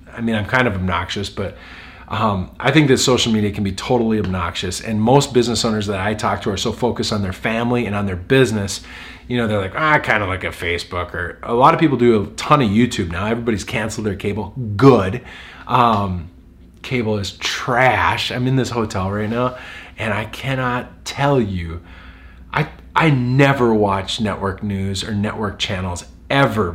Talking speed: 195 wpm